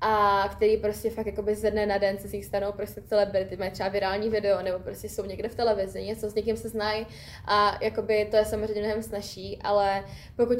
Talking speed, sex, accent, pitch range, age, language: 215 wpm, female, native, 205-225 Hz, 10-29, Czech